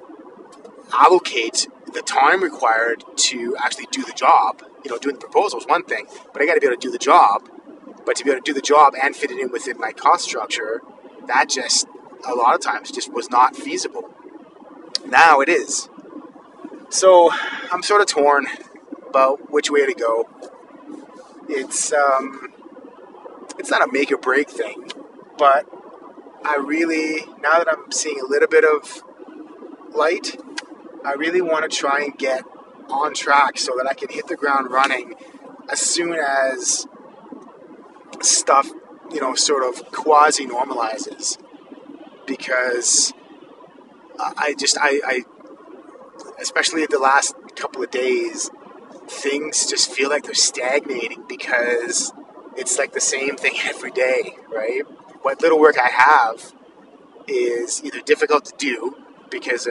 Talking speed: 150 wpm